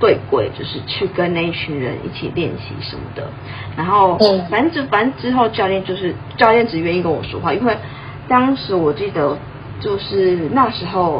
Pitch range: 140-190 Hz